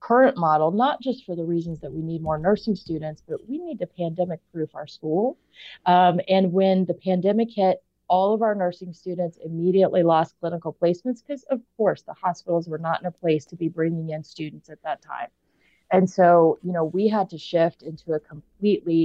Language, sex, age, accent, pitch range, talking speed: English, female, 30-49, American, 160-190 Hz, 205 wpm